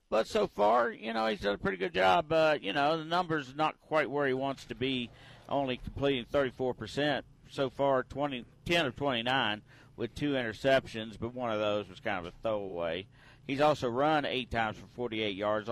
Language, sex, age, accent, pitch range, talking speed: English, male, 50-69, American, 115-145 Hz, 195 wpm